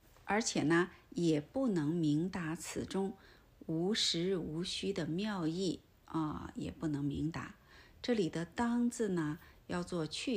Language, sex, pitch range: Chinese, female, 155-205 Hz